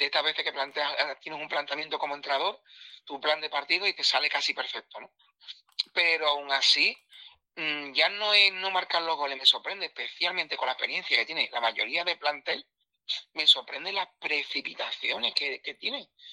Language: Spanish